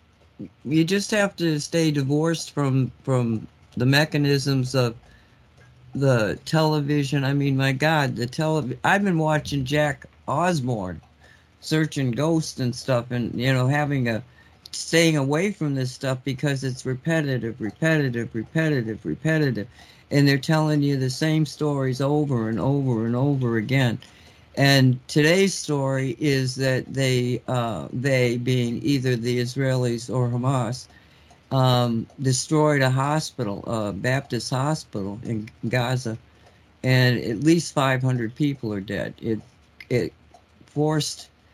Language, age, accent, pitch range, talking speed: English, 60-79, American, 115-150 Hz, 130 wpm